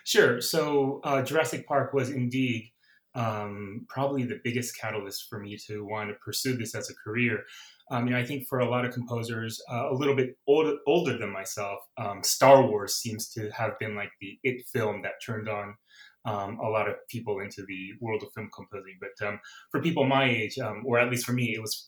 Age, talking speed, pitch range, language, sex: 30-49, 210 wpm, 110-135 Hz, English, male